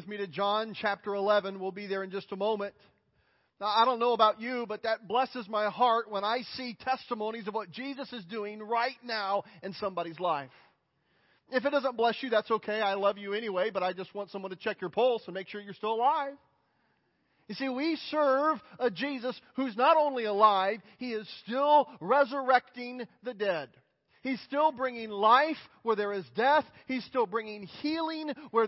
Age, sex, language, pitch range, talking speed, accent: 40-59, male, English, 210-270 Hz, 195 wpm, American